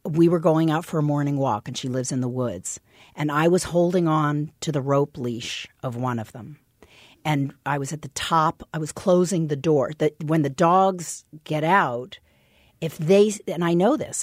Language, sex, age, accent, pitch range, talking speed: English, female, 50-69, American, 150-205 Hz, 210 wpm